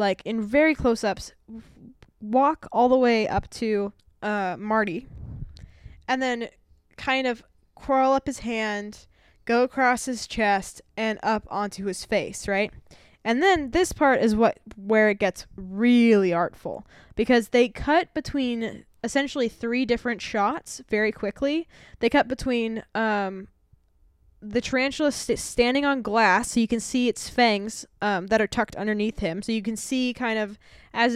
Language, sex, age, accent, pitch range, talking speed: English, female, 10-29, American, 205-245 Hz, 155 wpm